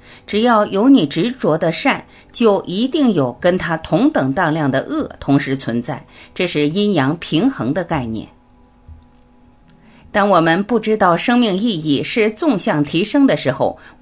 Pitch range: 135-215 Hz